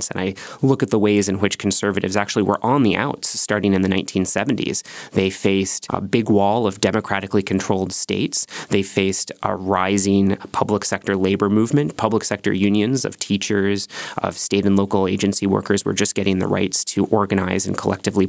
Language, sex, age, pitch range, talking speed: English, male, 20-39, 95-110 Hz, 180 wpm